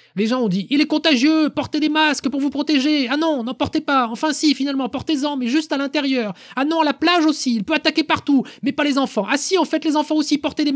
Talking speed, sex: 290 wpm, male